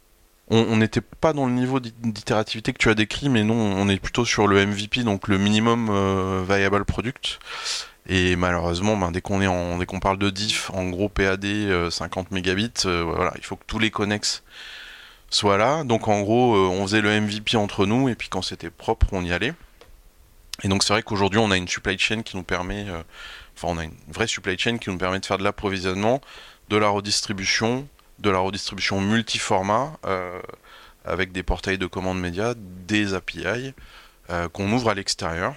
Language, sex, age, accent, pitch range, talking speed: French, male, 20-39, French, 95-110 Hz, 200 wpm